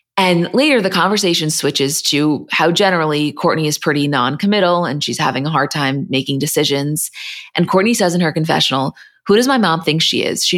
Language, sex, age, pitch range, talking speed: English, female, 20-39, 150-180 Hz, 195 wpm